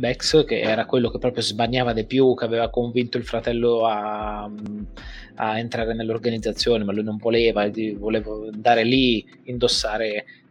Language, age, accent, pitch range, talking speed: Italian, 20-39, native, 110-125 Hz, 150 wpm